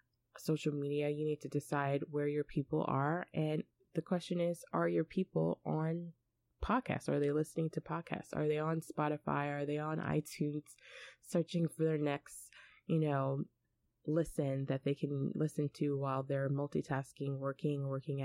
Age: 20-39